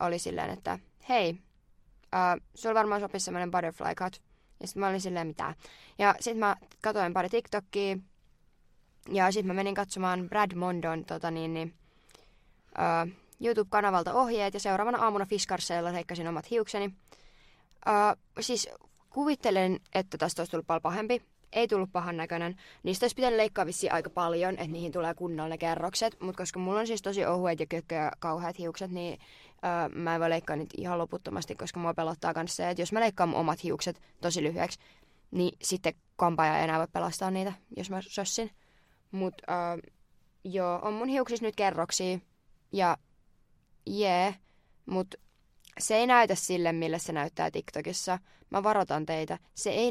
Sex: female